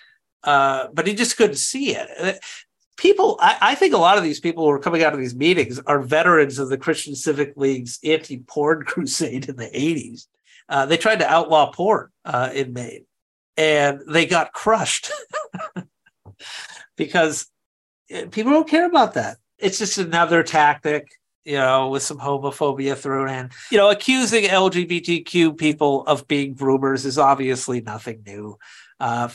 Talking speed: 160 wpm